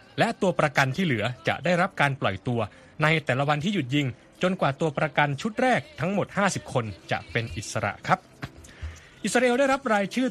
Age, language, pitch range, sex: 20-39, Thai, 125-185 Hz, male